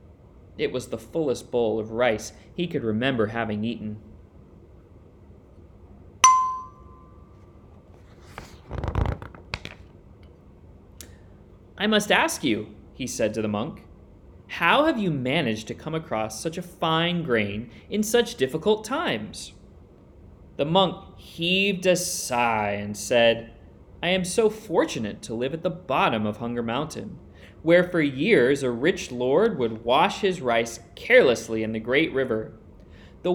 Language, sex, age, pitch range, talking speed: English, male, 20-39, 95-160 Hz, 130 wpm